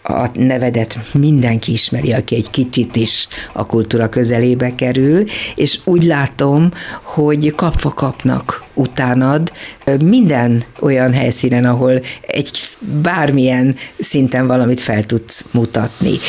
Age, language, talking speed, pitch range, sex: 60-79, Hungarian, 110 wpm, 120-155 Hz, female